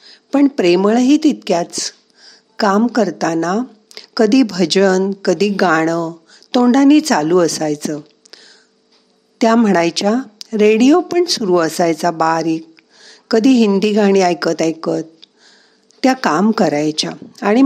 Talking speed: 95 wpm